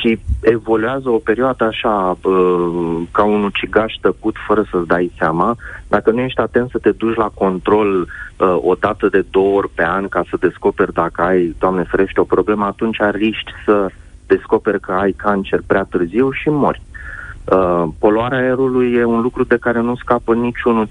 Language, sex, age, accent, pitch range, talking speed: Romanian, male, 30-49, native, 90-110 Hz, 175 wpm